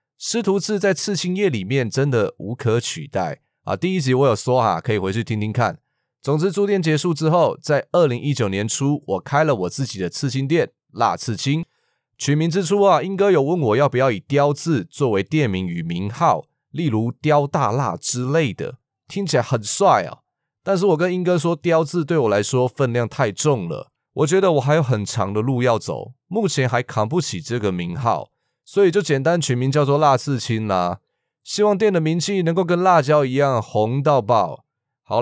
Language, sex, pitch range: Chinese, male, 120-170 Hz